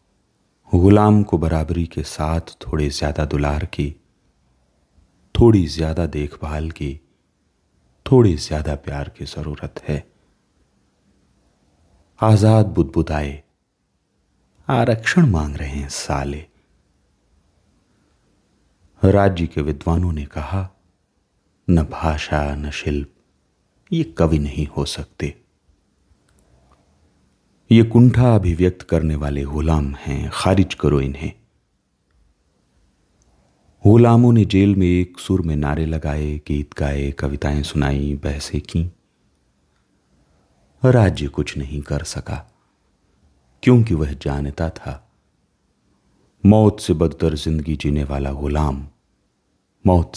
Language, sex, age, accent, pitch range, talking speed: Hindi, male, 40-59, native, 70-95 Hz, 100 wpm